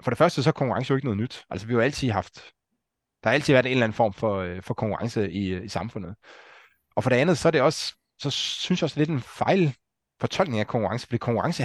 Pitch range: 105-135 Hz